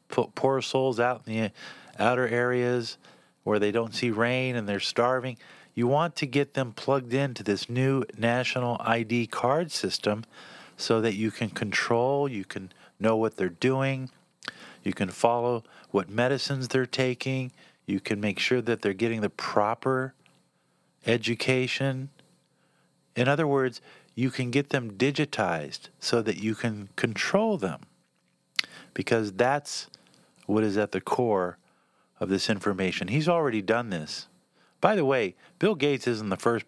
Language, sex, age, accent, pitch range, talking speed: English, male, 50-69, American, 105-130 Hz, 150 wpm